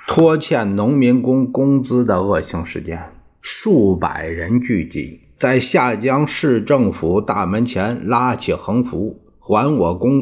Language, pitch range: Chinese, 95-140 Hz